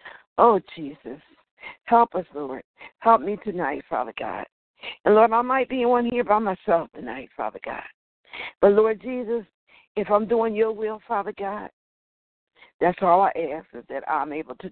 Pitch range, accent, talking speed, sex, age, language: 180-220 Hz, American, 165 wpm, female, 60-79, English